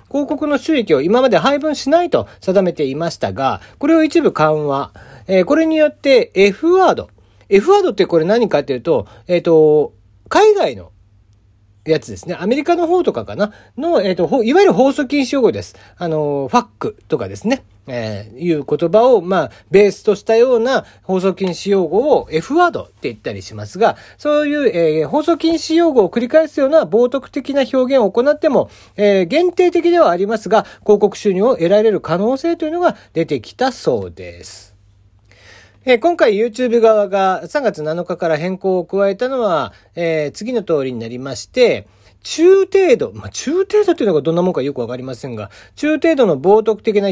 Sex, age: male, 40-59